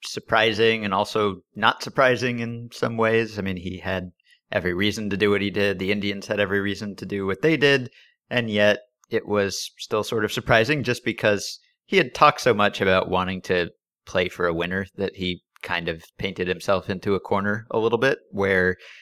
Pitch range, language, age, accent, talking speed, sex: 90-110 Hz, English, 30-49, American, 200 wpm, male